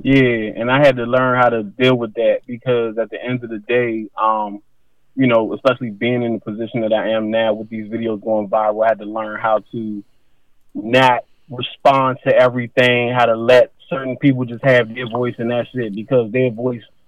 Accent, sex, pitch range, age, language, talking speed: American, male, 115-140 Hz, 20-39, English, 210 wpm